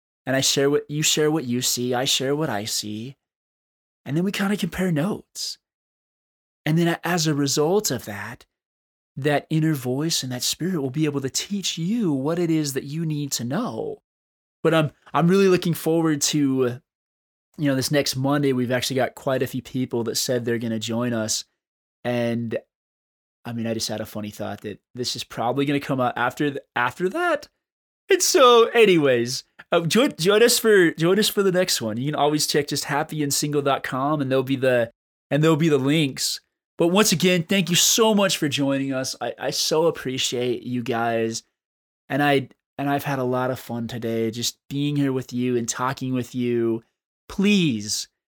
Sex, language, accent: male, English, American